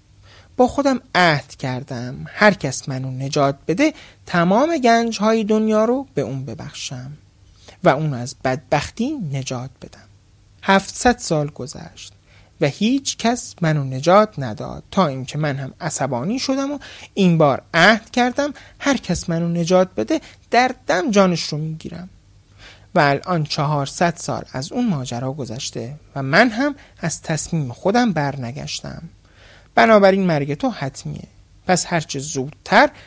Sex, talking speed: male, 135 wpm